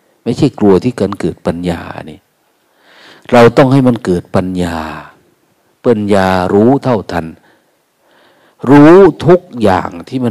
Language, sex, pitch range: Thai, male, 95-125 Hz